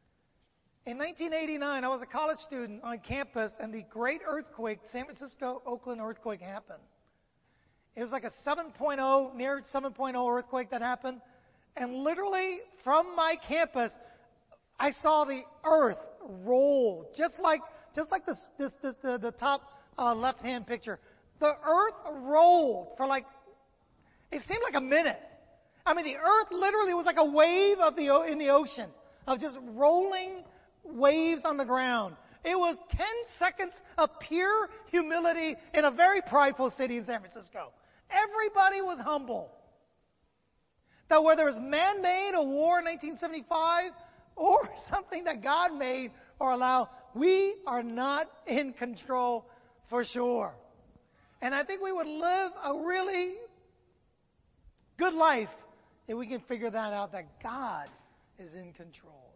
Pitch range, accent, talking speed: 250-335 Hz, American, 145 wpm